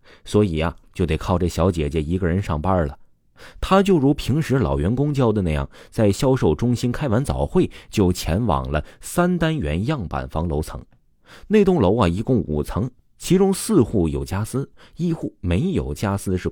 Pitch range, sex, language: 80-125 Hz, male, Chinese